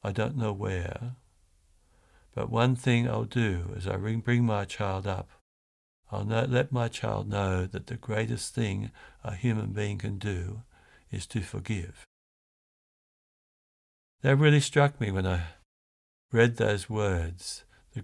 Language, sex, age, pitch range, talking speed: English, male, 60-79, 95-120 Hz, 140 wpm